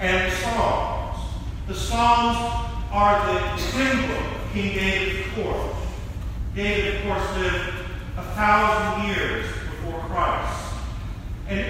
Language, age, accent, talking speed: English, 40-59, American, 115 wpm